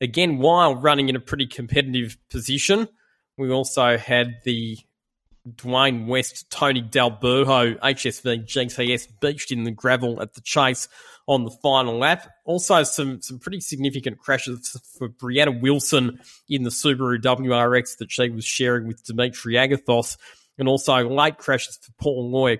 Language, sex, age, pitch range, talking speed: English, male, 20-39, 120-140 Hz, 150 wpm